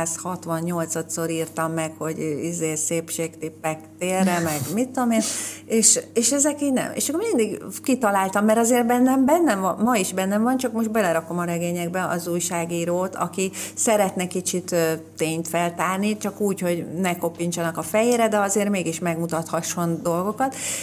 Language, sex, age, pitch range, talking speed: Hungarian, female, 30-49, 170-210 Hz, 160 wpm